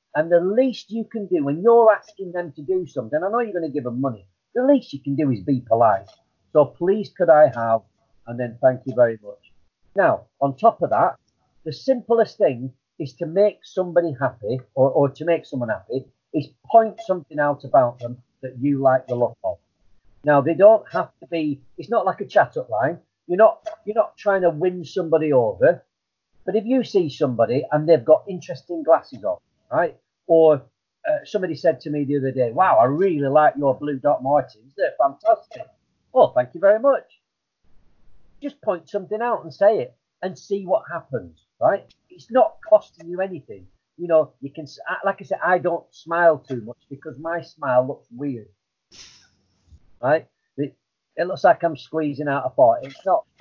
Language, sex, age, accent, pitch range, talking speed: English, male, 40-59, British, 135-200 Hz, 195 wpm